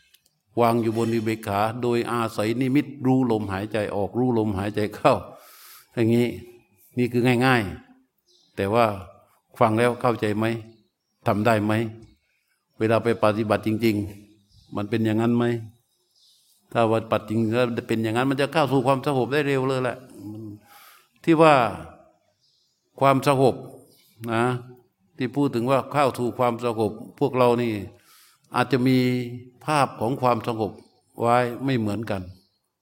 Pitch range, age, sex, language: 110-130 Hz, 60-79, male, Thai